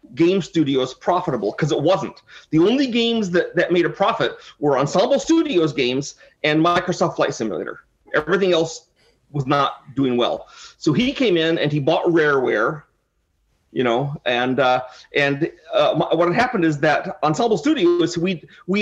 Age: 40-59